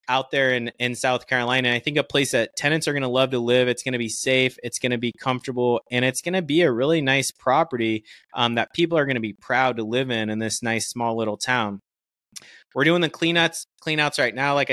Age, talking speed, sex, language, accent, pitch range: 20-39, 255 wpm, male, English, American, 115-130 Hz